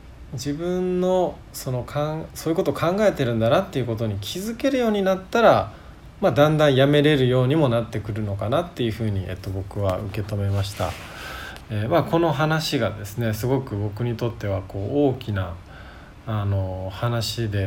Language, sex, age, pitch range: Japanese, male, 20-39, 105-140 Hz